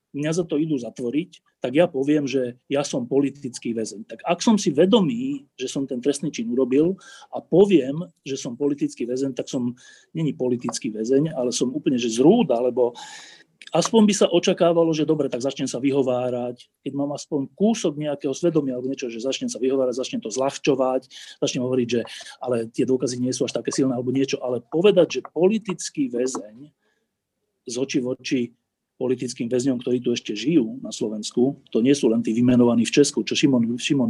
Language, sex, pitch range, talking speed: Slovak, male, 125-160 Hz, 185 wpm